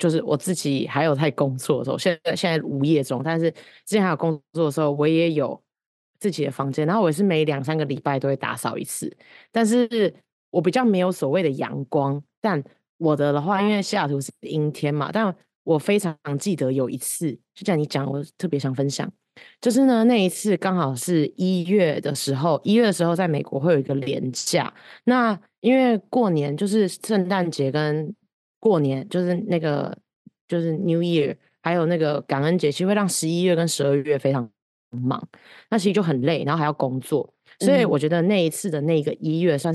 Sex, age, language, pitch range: female, 20-39, Chinese, 145-185 Hz